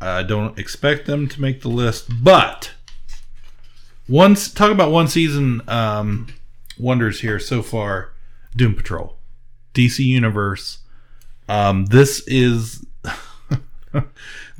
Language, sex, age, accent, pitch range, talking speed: English, male, 40-59, American, 110-145 Hz, 105 wpm